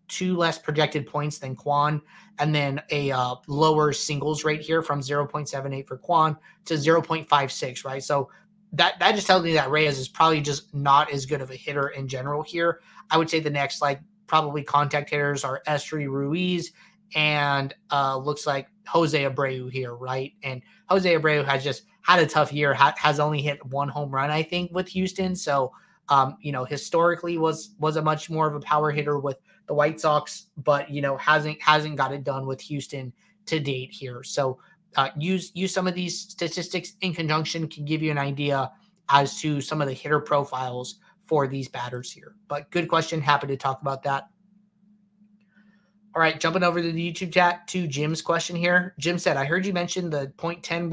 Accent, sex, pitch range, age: American, male, 140-170 Hz, 20-39